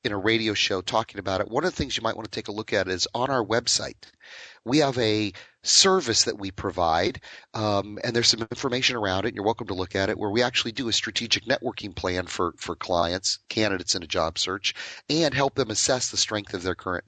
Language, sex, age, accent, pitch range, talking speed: English, male, 30-49, American, 95-120 Hz, 245 wpm